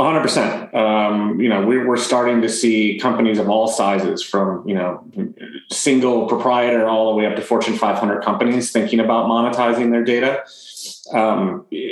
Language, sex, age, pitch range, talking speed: English, male, 30-49, 100-120 Hz, 170 wpm